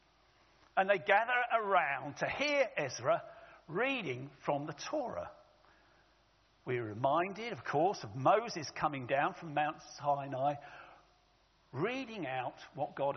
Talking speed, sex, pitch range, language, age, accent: 120 wpm, male, 180-300 Hz, English, 50-69, British